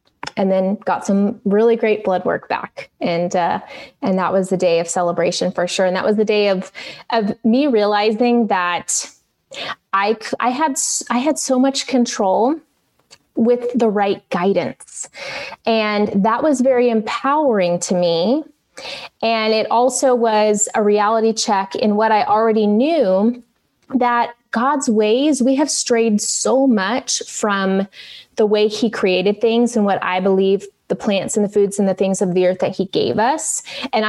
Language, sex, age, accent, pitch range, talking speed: English, female, 20-39, American, 195-240 Hz, 165 wpm